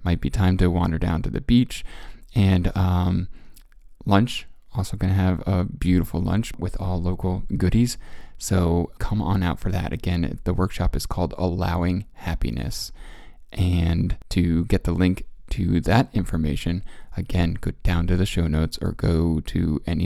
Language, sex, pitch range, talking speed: English, male, 80-95 Hz, 160 wpm